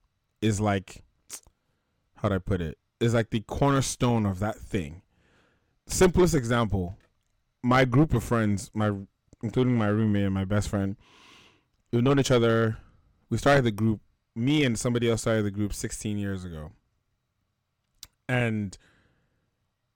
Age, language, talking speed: 20-39, English, 140 wpm